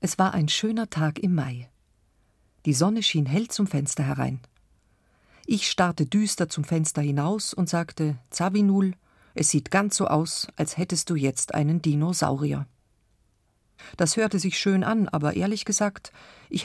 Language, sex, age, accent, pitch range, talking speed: German, female, 40-59, German, 145-195 Hz, 155 wpm